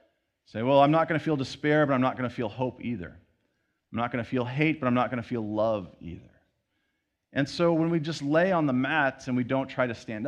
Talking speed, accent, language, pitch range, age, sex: 265 wpm, American, English, 100-135 Hz, 40-59, male